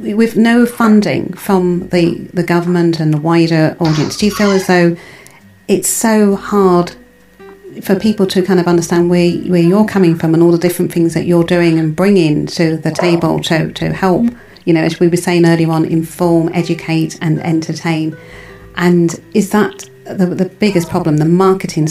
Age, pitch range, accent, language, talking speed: 40-59, 165-190 Hz, British, English, 185 wpm